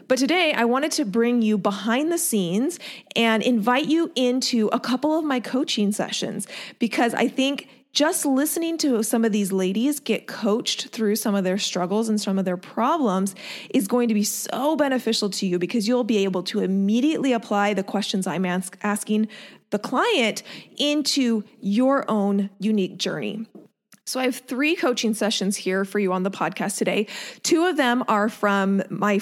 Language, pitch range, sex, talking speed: English, 195-245 Hz, female, 180 wpm